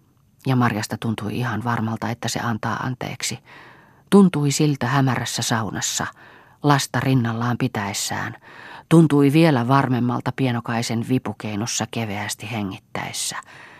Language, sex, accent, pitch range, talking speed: Finnish, female, native, 115-135 Hz, 100 wpm